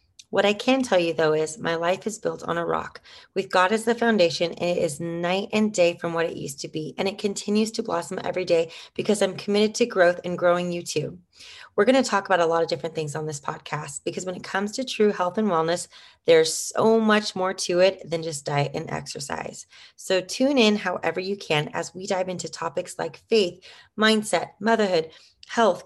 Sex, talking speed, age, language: female, 225 wpm, 30-49, English